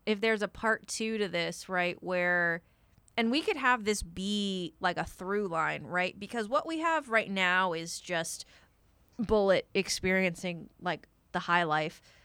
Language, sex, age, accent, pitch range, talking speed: English, female, 20-39, American, 180-245 Hz, 165 wpm